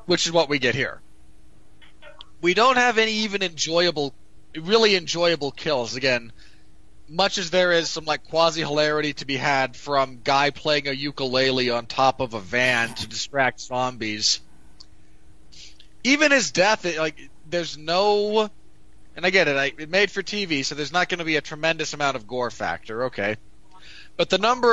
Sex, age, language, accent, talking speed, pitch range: male, 30-49, English, American, 175 wpm, 130-180 Hz